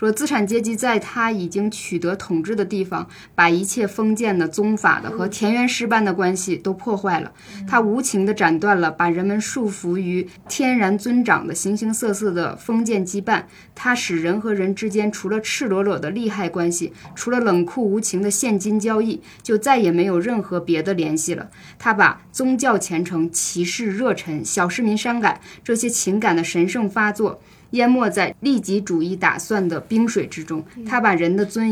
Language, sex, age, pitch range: Chinese, female, 20-39, 175-220 Hz